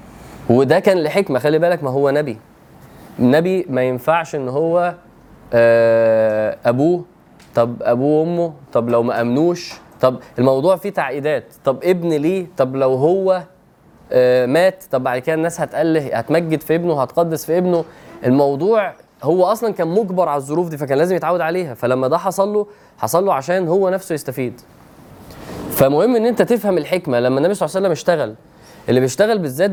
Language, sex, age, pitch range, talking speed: Arabic, male, 20-39, 130-185 Hz, 160 wpm